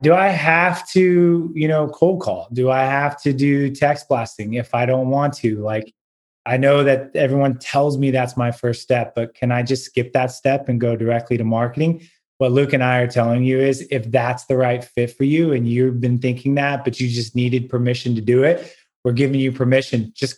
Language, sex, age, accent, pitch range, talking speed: English, male, 20-39, American, 125-140 Hz, 225 wpm